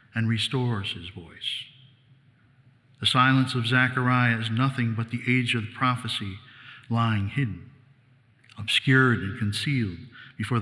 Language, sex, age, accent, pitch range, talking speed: English, male, 50-69, American, 115-130 Hz, 120 wpm